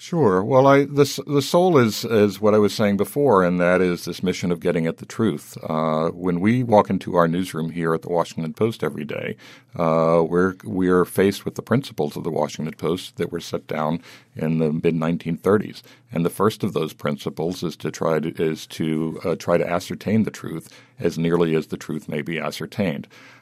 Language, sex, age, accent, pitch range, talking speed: English, male, 60-79, American, 85-115 Hz, 210 wpm